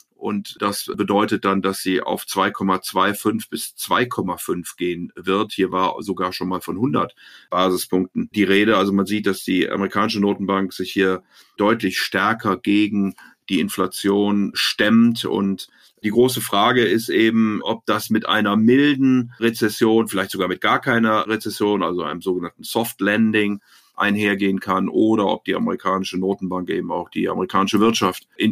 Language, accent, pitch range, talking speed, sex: German, German, 100-115 Hz, 155 wpm, male